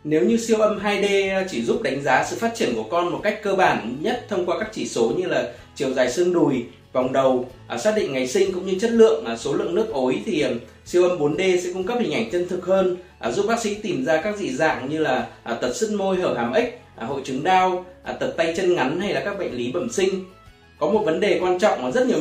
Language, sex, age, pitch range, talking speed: Vietnamese, male, 20-39, 135-195 Hz, 255 wpm